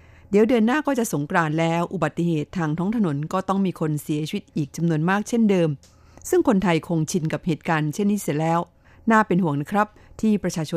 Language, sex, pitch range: Thai, female, 155-190 Hz